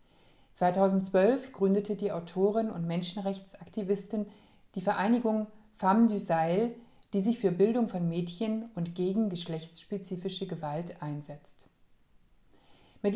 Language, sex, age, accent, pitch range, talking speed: German, female, 50-69, German, 170-210 Hz, 105 wpm